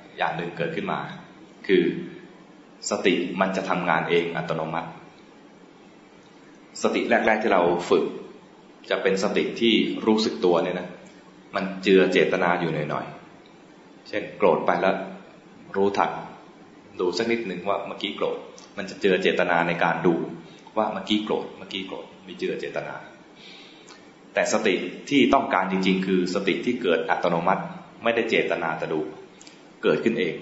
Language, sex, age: English, male, 20-39